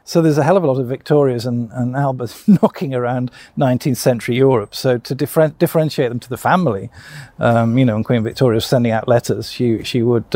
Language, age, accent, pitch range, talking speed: English, 50-69, British, 115-135 Hz, 220 wpm